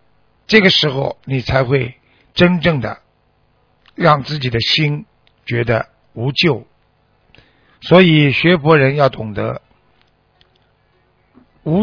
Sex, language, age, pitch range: male, Chinese, 50-69, 125-170 Hz